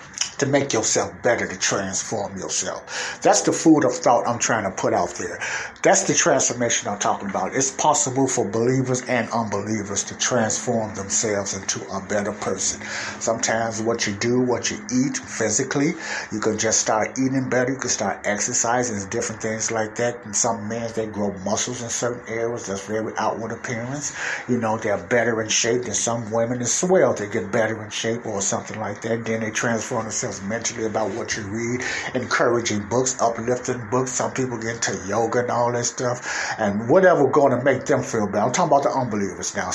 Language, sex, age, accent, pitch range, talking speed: English, male, 60-79, American, 110-125 Hz, 190 wpm